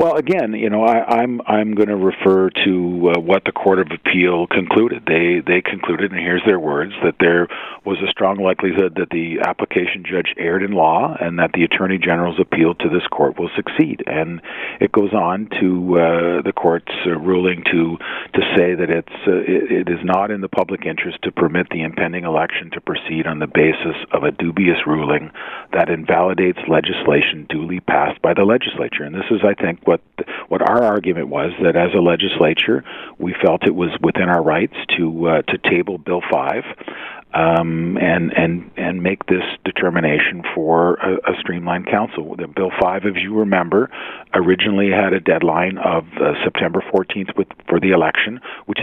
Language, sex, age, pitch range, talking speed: English, male, 50-69, 85-95 Hz, 185 wpm